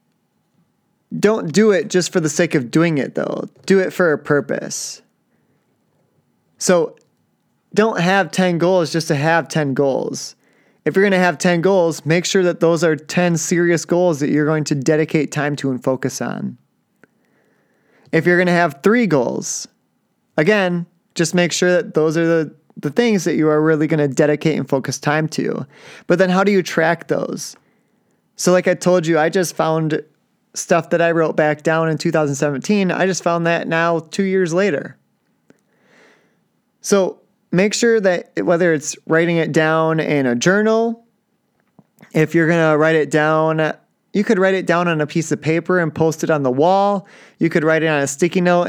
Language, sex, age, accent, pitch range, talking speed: English, male, 20-39, American, 155-185 Hz, 190 wpm